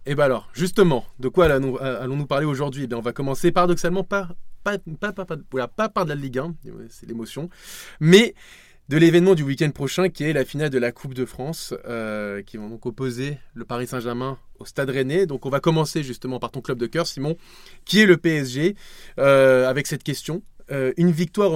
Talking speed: 210 wpm